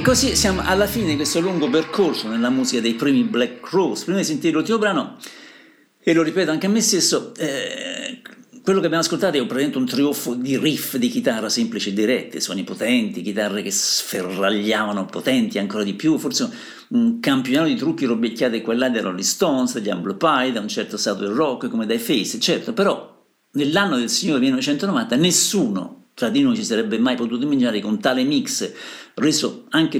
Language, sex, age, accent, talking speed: Italian, male, 50-69, native, 190 wpm